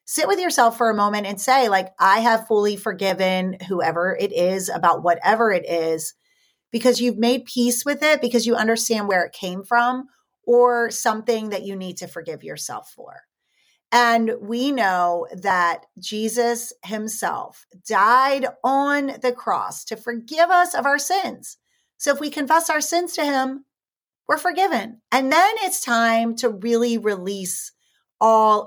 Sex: female